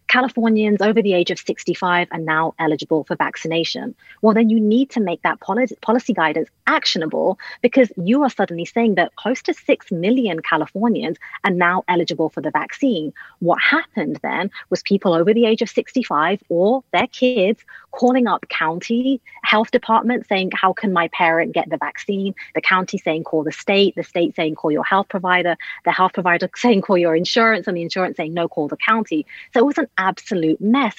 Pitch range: 170-225 Hz